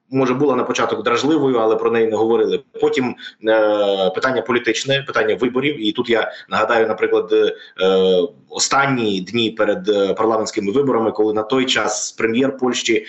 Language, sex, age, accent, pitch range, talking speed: Ukrainian, male, 20-39, native, 120-150 Hz, 155 wpm